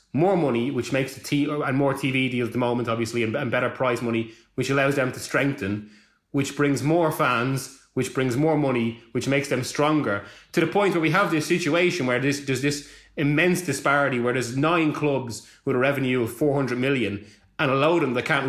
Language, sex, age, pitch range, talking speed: English, male, 30-49, 130-165 Hz, 220 wpm